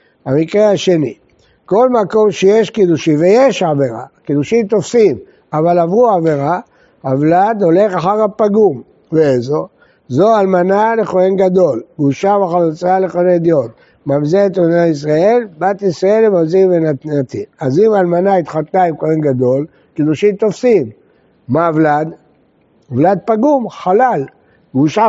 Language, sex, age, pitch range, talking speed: Hebrew, male, 60-79, 155-200 Hz, 115 wpm